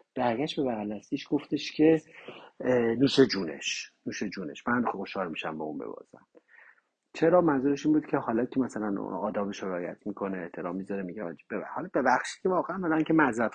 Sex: male